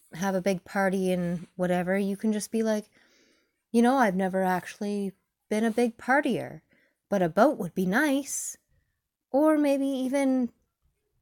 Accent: American